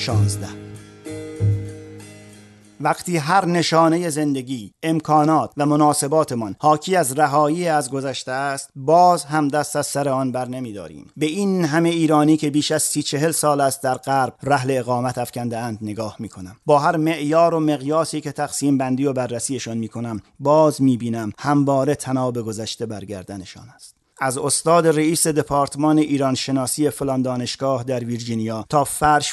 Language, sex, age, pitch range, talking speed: Persian, male, 40-59, 120-155 Hz, 145 wpm